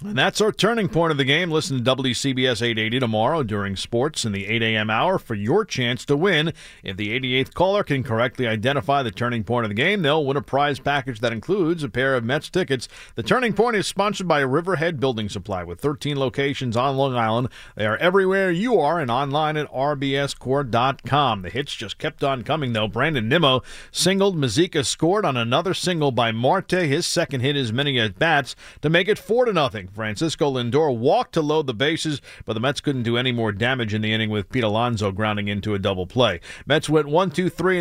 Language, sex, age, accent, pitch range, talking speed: English, male, 40-59, American, 120-160 Hz, 210 wpm